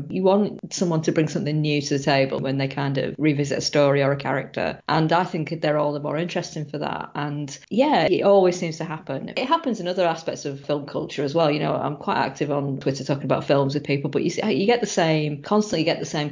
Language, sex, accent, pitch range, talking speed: English, female, British, 140-170 Hz, 260 wpm